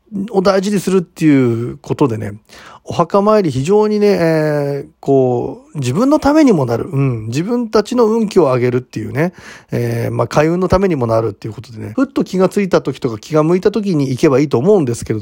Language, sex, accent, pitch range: Japanese, male, native, 125-180 Hz